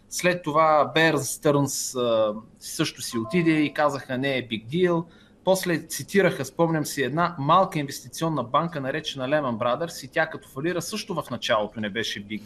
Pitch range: 125-160 Hz